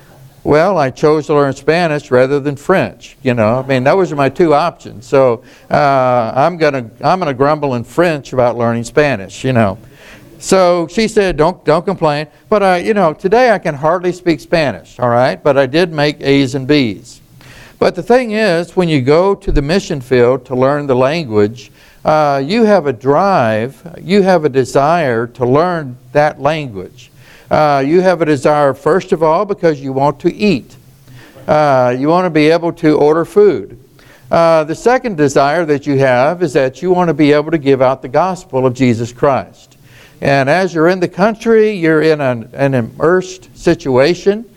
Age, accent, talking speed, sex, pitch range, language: 60-79, American, 190 wpm, male, 130-170 Hz, English